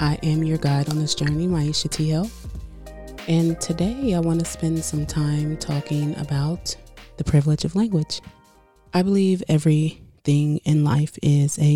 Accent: American